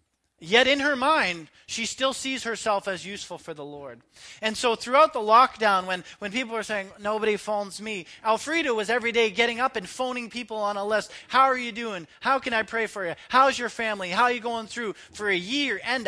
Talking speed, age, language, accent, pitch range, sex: 225 wpm, 30-49, English, American, 145-220 Hz, male